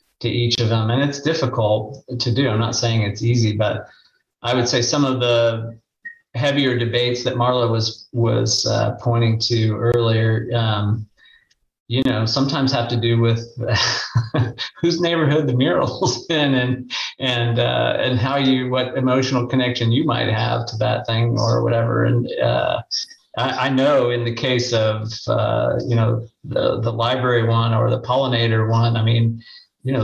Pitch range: 115-130 Hz